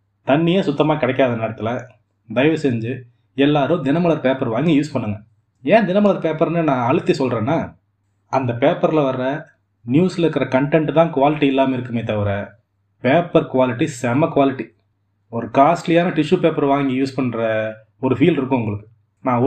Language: Tamil